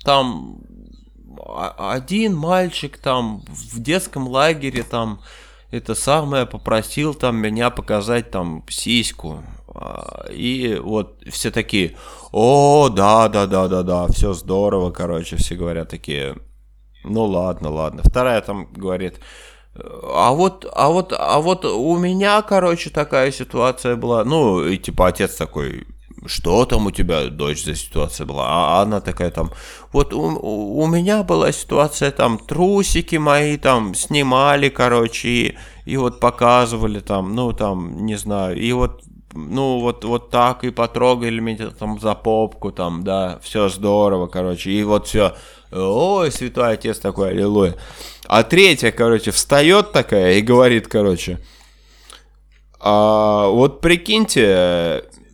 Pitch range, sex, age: 95-135 Hz, male, 20-39